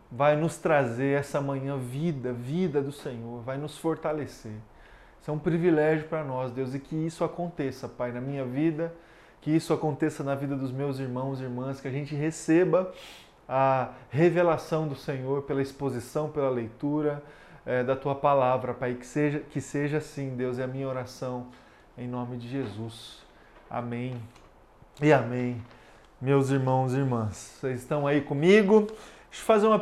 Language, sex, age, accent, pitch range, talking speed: Portuguese, male, 20-39, Brazilian, 130-165 Hz, 165 wpm